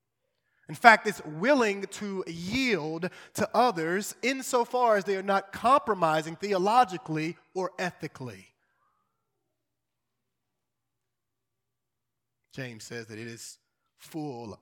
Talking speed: 95 wpm